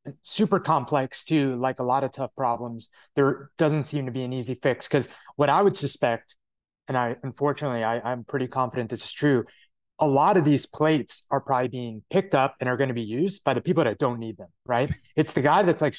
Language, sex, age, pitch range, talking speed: English, male, 30-49, 125-160 Hz, 230 wpm